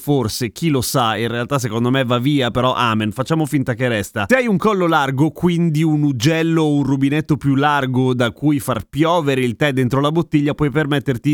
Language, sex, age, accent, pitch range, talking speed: Italian, male, 30-49, native, 120-160 Hz, 210 wpm